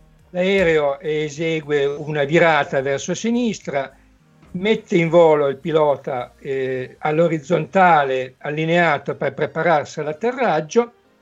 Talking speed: 90 wpm